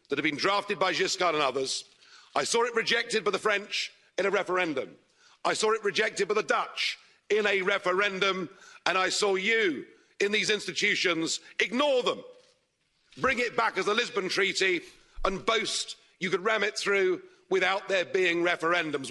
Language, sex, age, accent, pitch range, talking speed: English, male, 50-69, British, 185-235 Hz, 170 wpm